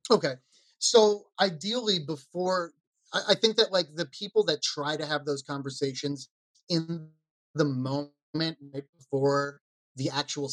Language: English